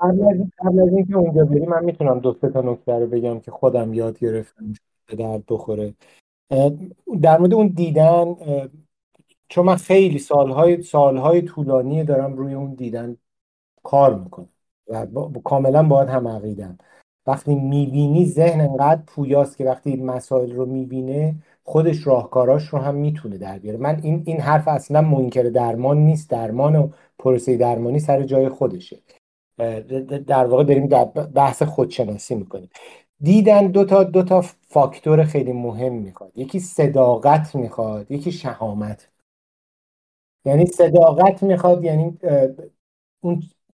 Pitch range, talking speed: 125-160 Hz, 140 wpm